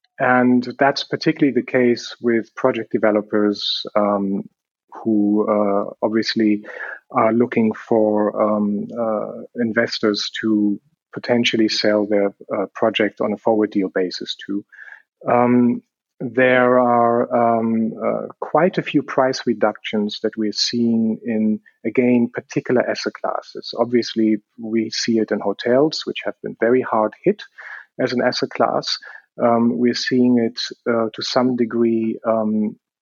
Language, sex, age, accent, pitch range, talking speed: German, male, 40-59, German, 110-125 Hz, 135 wpm